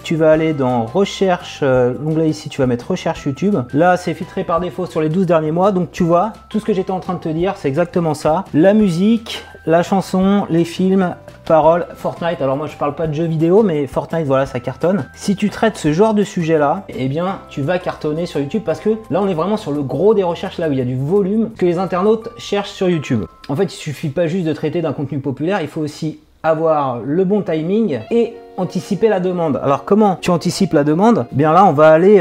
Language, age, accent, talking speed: French, 30-49, French, 245 wpm